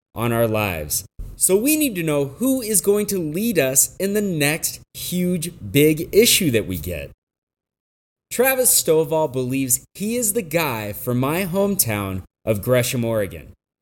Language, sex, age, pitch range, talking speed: English, male, 30-49, 120-190 Hz, 155 wpm